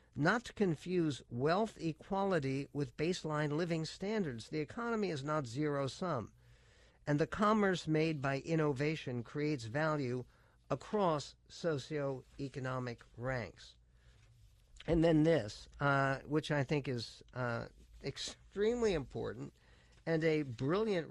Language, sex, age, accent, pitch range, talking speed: English, male, 50-69, American, 130-180 Hz, 115 wpm